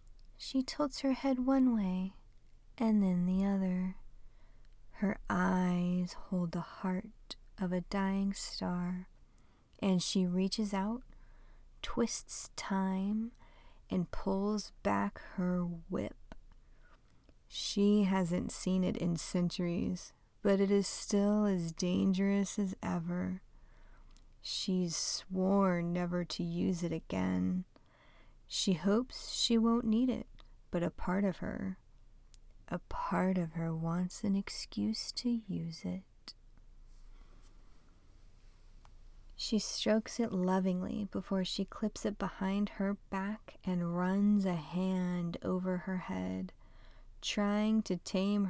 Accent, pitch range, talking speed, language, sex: American, 170-200 Hz, 115 wpm, English, female